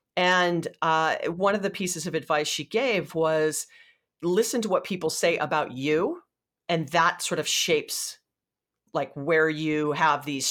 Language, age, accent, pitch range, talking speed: English, 40-59, American, 150-180 Hz, 160 wpm